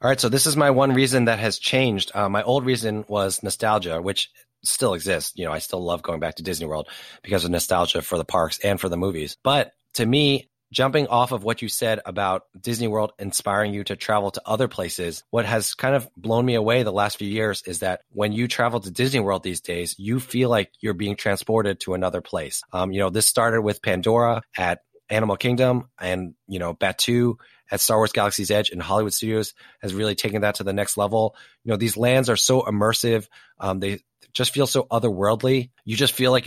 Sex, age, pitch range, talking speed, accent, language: male, 30-49, 95-120 Hz, 225 wpm, American, English